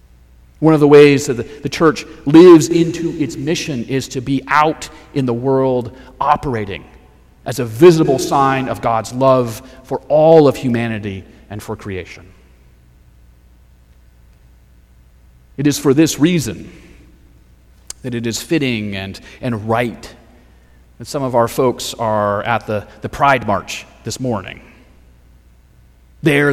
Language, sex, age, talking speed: English, male, 40-59, 135 wpm